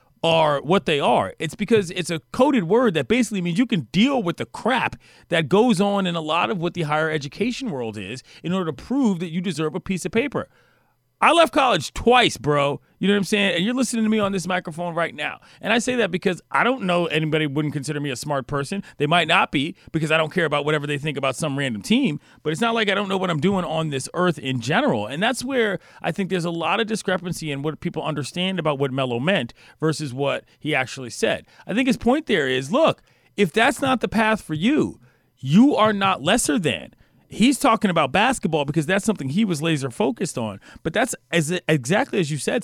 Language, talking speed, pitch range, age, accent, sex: English, 240 wpm, 155-215 Hz, 40-59, American, male